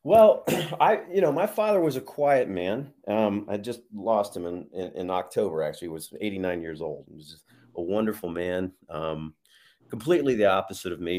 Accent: American